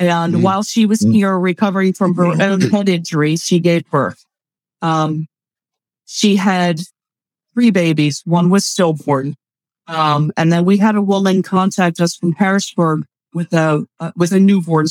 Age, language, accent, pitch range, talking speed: 40-59, English, American, 165-205 Hz, 155 wpm